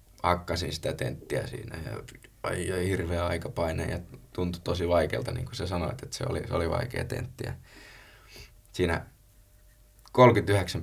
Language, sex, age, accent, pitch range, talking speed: Finnish, male, 20-39, native, 90-120 Hz, 150 wpm